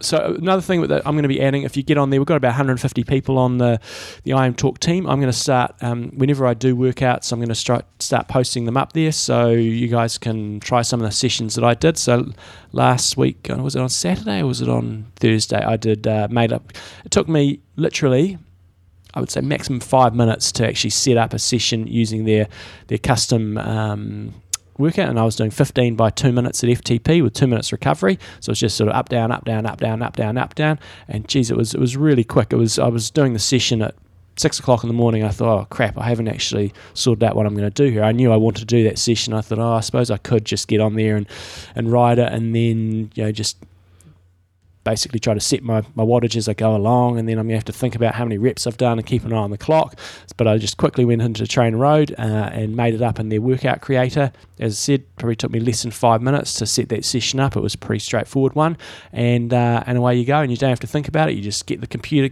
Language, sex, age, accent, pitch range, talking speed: English, male, 20-39, Australian, 110-130 Hz, 265 wpm